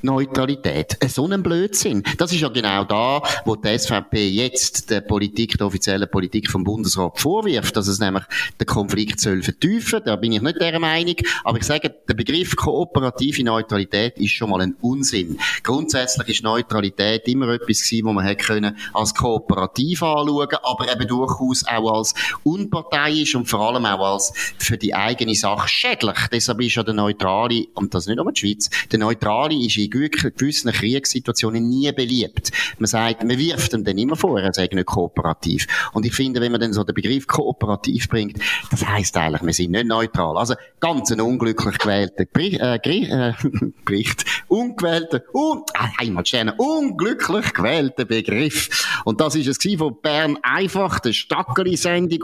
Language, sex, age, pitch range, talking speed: German, male, 30-49, 105-140 Hz, 170 wpm